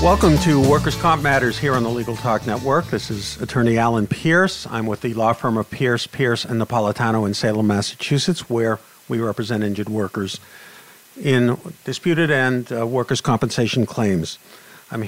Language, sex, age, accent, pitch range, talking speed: English, male, 50-69, American, 115-140 Hz, 165 wpm